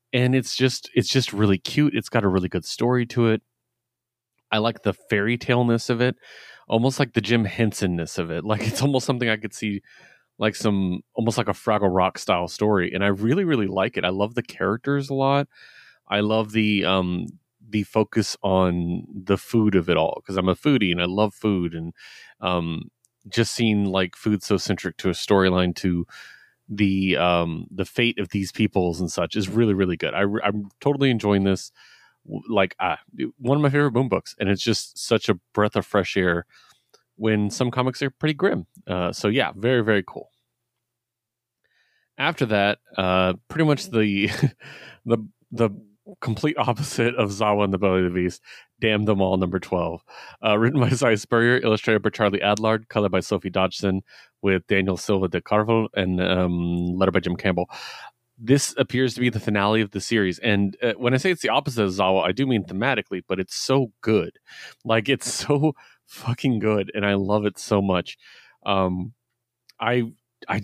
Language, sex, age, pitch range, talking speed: English, male, 30-49, 95-120 Hz, 190 wpm